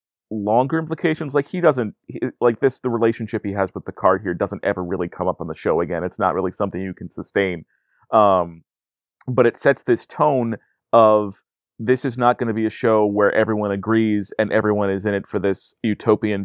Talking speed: 210 wpm